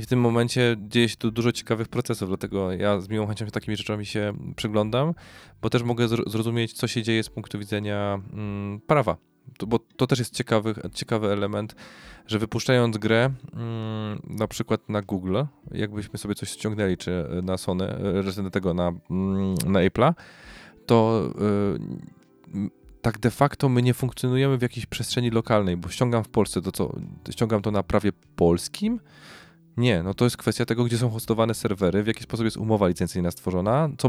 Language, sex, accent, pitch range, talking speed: Polish, male, native, 100-120 Hz, 180 wpm